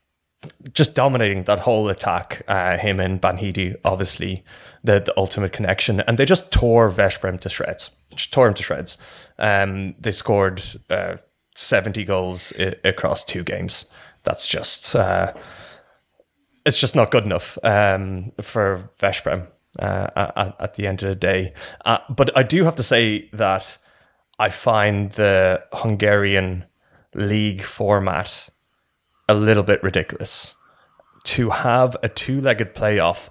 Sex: male